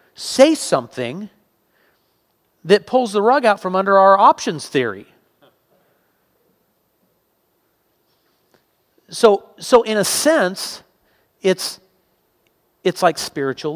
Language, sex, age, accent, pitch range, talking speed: English, male, 40-59, American, 115-165 Hz, 90 wpm